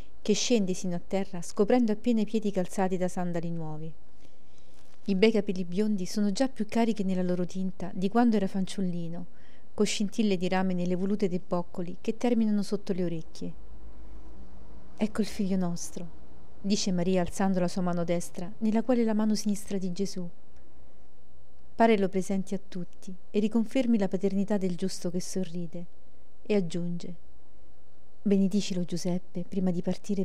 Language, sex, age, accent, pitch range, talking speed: Italian, female, 40-59, native, 170-200 Hz, 155 wpm